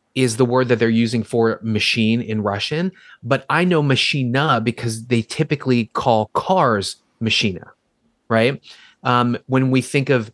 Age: 30-49